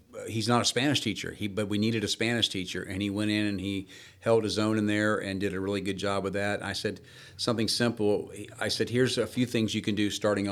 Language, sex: English, male